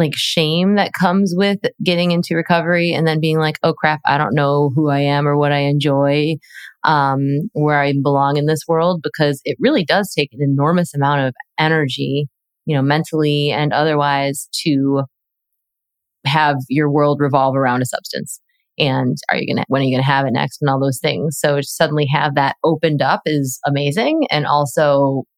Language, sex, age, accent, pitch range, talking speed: English, female, 20-39, American, 140-160 Hz, 190 wpm